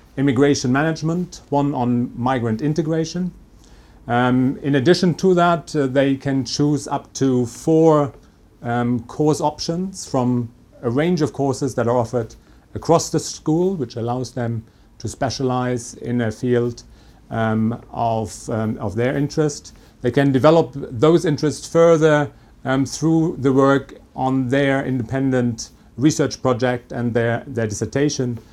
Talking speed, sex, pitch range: 135 wpm, male, 115-155 Hz